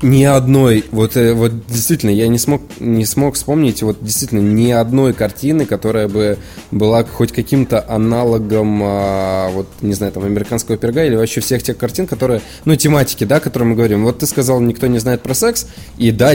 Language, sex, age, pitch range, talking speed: Russian, male, 20-39, 110-140 Hz, 185 wpm